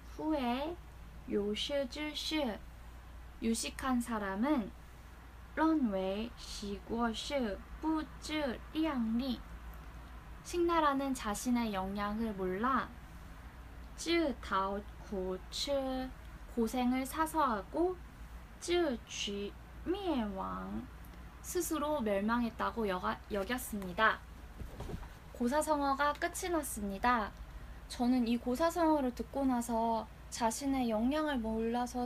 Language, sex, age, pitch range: Korean, female, 10-29, 215-280 Hz